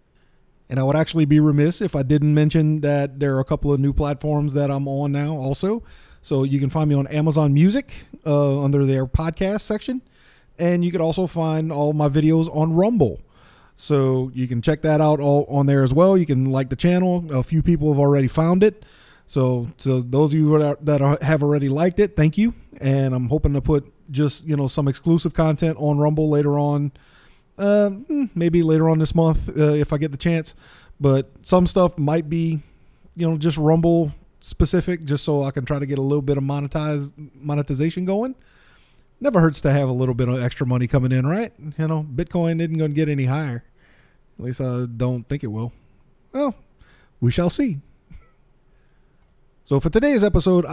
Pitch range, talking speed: 140-165 Hz, 205 wpm